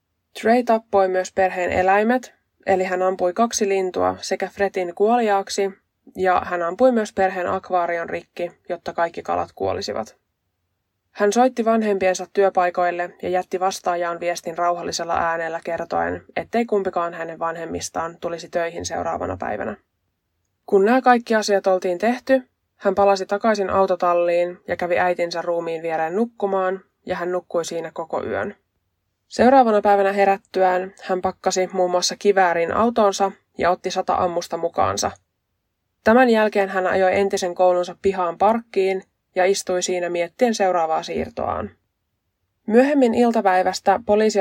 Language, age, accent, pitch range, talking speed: Finnish, 20-39, native, 170-200 Hz, 130 wpm